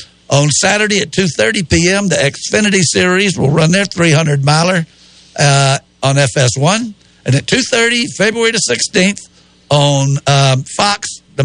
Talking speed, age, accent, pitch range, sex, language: 125 wpm, 60-79, American, 140-190 Hz, male, English